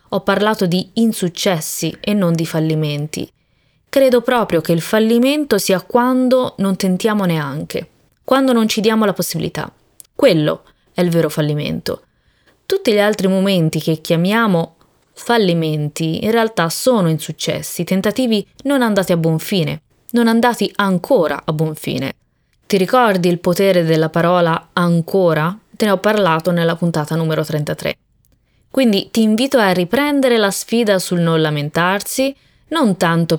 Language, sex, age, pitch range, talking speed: Italian, female, 20-39, 165-225 Hz, 140 wpm